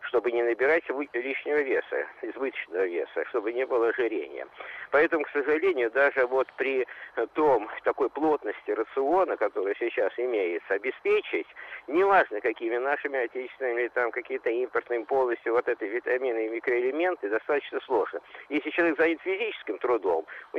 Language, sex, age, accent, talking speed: Russian, male, 50-69, native, 135 wpm